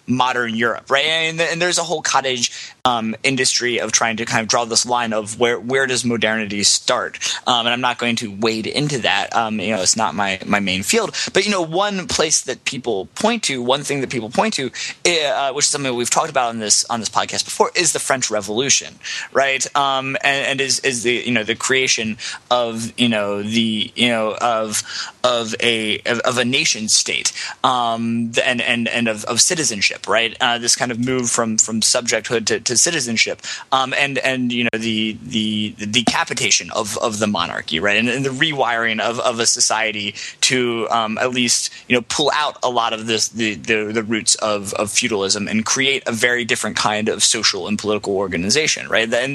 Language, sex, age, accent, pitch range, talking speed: English, male, 20-39, American, 110-130 Hz, 210 wpm